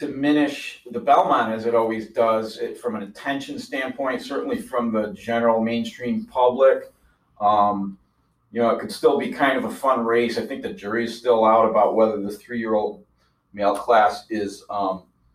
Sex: male